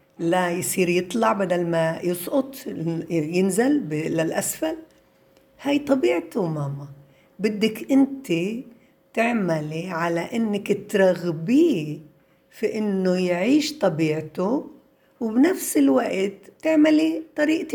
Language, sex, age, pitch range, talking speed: Arabic, female, 60-79, 165-230 Hz, 85 wpm